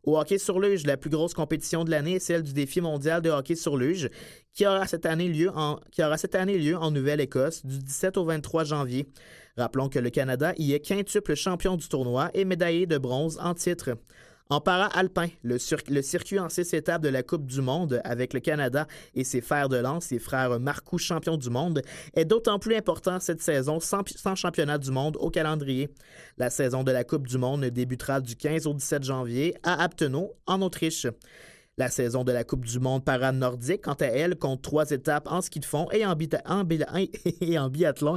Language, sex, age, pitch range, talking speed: French, male, 30-49, 135-170 Hz, 215 wpm